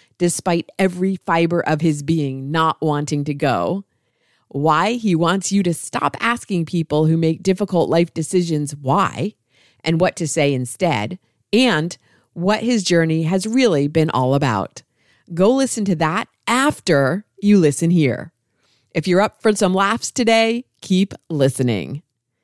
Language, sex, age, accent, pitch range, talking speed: English, female, 40-59, American, 145-195 Hz, 145 wpm